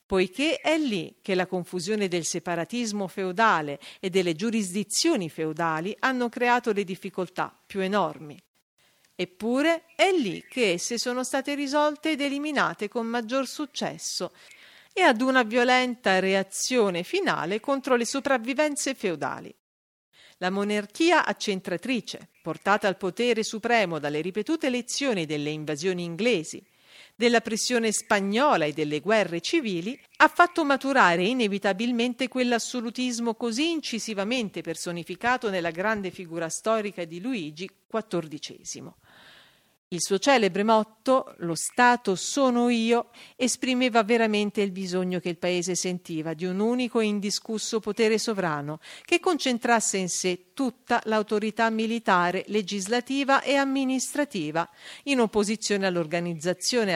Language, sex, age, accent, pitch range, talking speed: Italian, female, 50-69, native, 185-255 Hz, 120 wpm